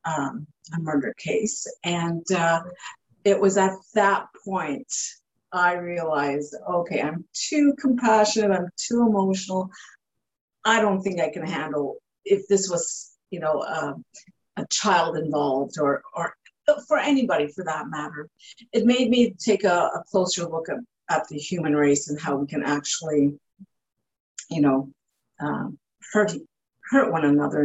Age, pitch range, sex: 50-69, 160-215 Hz, female